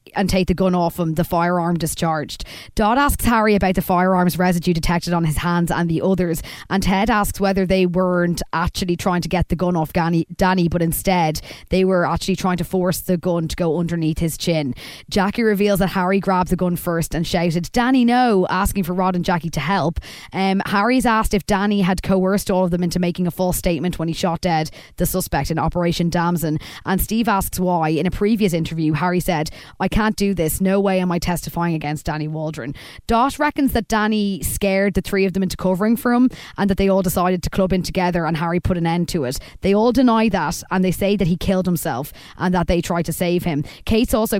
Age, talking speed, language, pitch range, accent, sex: 20-39, 225 wpm, English, 170-195 Hz, Irish, female